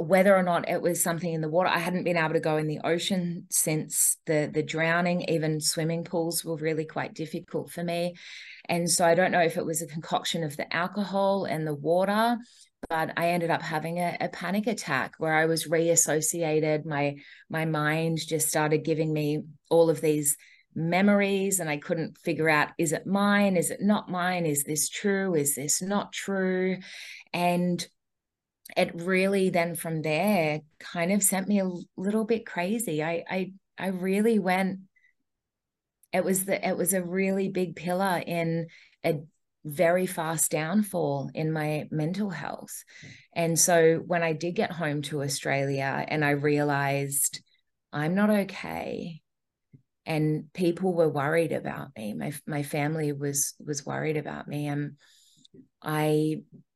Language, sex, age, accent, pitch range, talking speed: English, female, 20-39, Australian, 155-185 Hz, 165 wpm